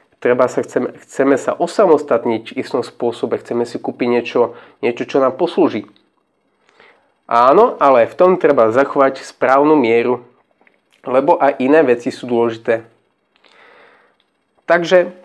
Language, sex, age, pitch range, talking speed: Slovak, male, 30-49, 125-155 Hz, 120 wpm